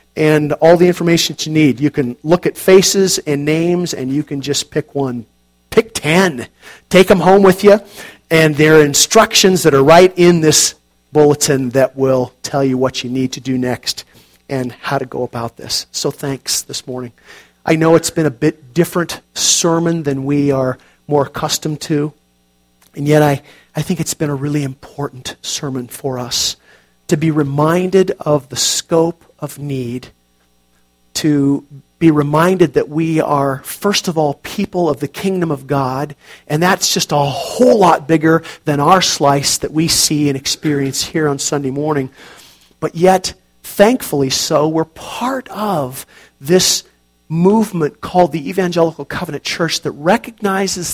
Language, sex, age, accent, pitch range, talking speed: English, male, 40-59, American, 135-170 Hz, 165 wpm